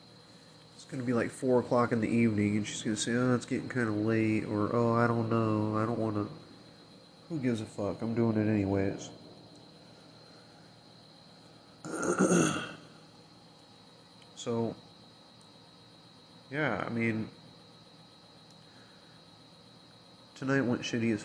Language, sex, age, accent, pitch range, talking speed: English, male, 30-49, American, 110-140 Hz, 120 wpm